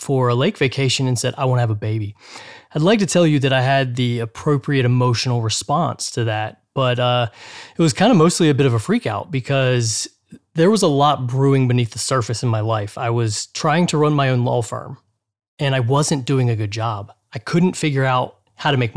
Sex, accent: male, American